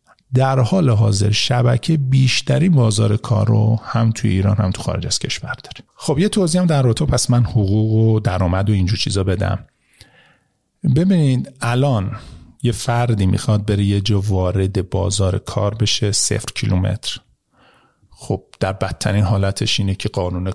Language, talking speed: Persian, 155 wpm